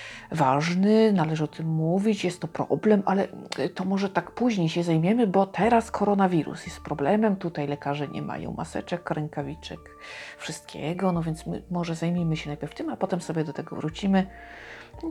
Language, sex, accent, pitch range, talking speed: Polish, female, native, 155-190 Hz, 165 wpm